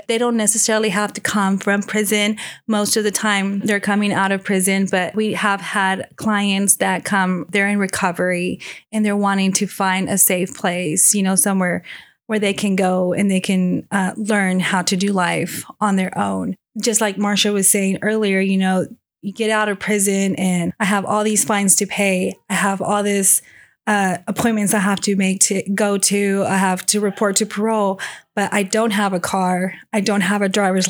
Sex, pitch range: female, 195-215 Hz